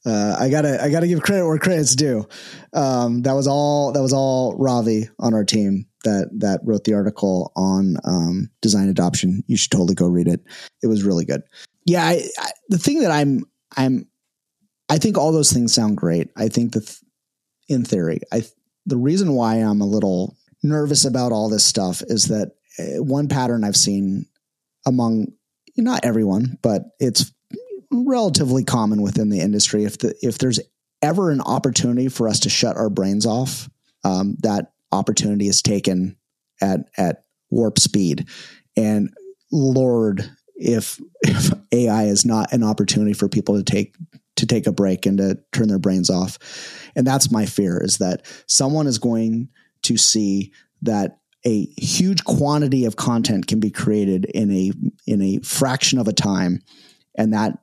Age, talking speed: 30-49, 170 wpm